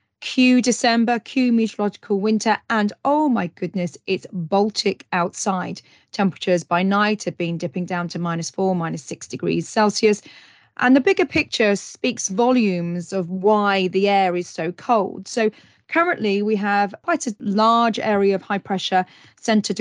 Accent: British